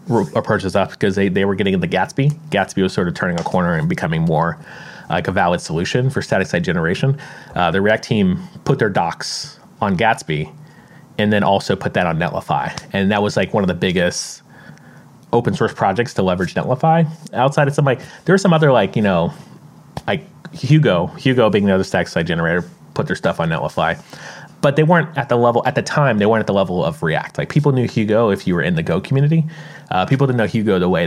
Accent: American